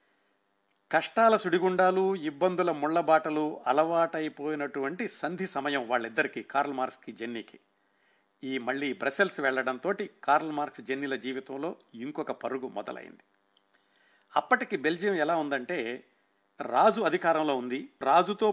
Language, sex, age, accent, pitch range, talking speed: Telugu, male, 50-69, native, 120-175 Hz, 95 wpm